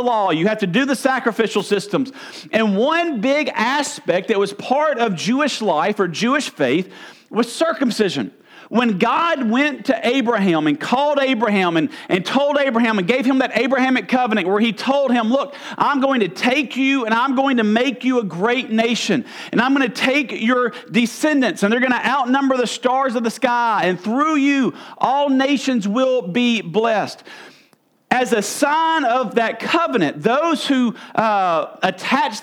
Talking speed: 175 wpm